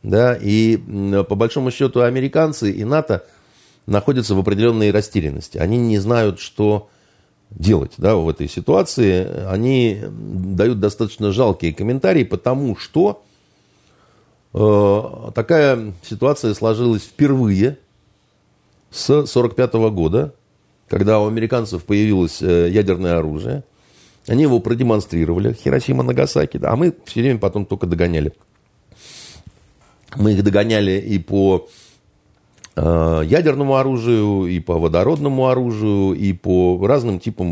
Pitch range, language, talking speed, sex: 95-120 Hz, Russian, 110 wpm, male